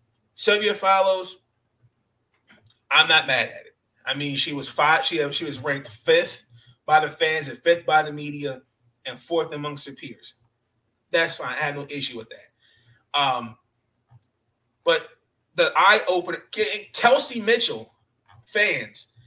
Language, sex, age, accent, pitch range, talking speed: English, male, 30-49, American, 120-170 Hz, 145 wpm